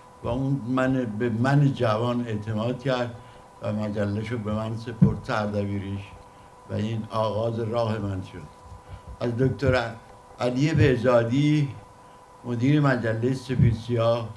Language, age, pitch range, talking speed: English, 60-79, 105-130 Hz, 120 wpm